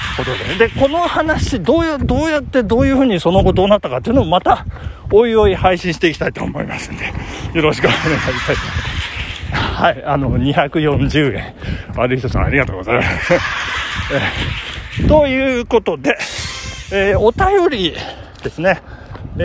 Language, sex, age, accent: Japanese, male, 40-59, native